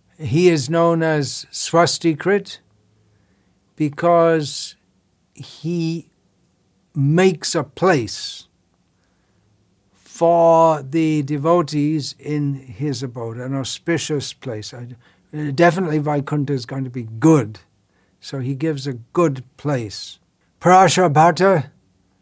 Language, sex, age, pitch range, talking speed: English, male, 60-79, 115-170 Hz, 90 wpm